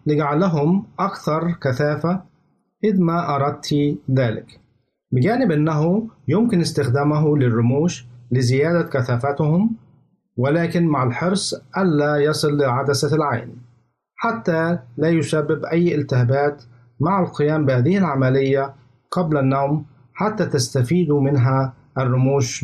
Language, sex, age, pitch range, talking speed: Arabic, male, 50-69, 130-165 Hz, 95 wpm